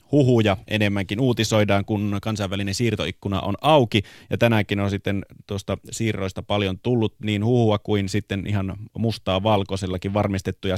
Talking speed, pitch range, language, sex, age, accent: 135 wpm, 95-110 Hz, Finnish, male, 30-49, native